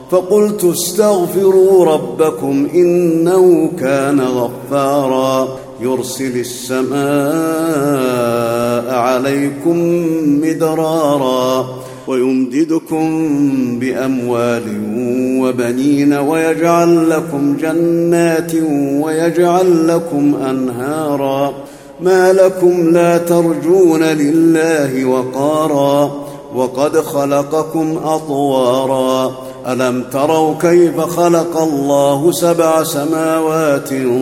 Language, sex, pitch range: Arabic, male, 130-165 Hz